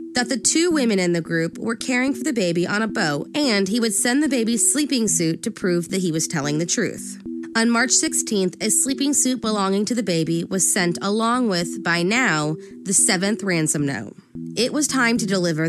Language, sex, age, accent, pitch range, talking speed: English, female, 20-39, American, 175-245 Hz, 215 wpm